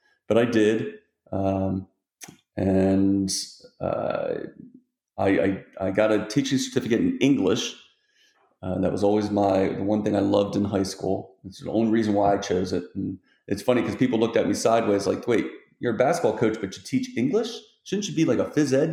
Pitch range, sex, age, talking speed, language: 105-140 Hz, male, 40-59, 200 wpm, English